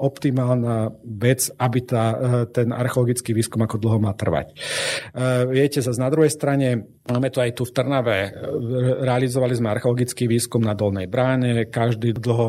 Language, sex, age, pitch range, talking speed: Slovak, male, 40-59, 115-130 Hz, 155 wpm